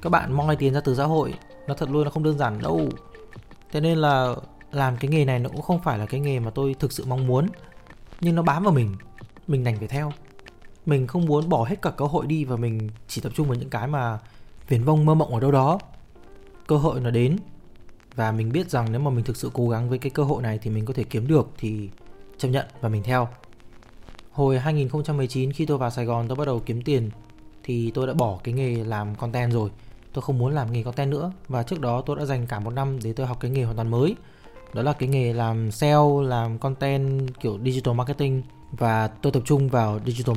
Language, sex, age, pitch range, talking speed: Vietnamese, male, 20-39, 115-140 Hz, 245 wpm